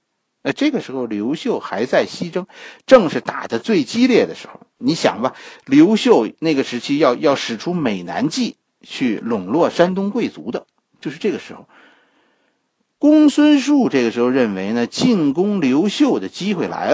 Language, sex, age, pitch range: Chinese, male, 50-69, 160-265 Hz